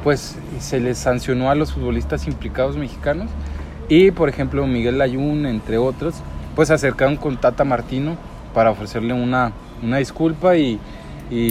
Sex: male